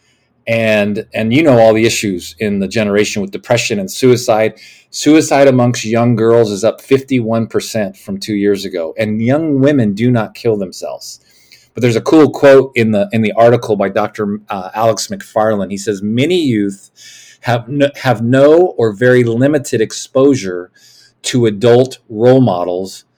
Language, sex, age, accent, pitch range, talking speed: English, male, 40-59, American, 105-135 Hz, 160 wpm